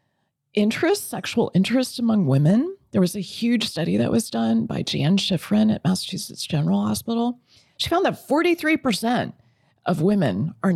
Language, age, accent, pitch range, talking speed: English, 30-49, American, 180-235 Hz, 150 wpm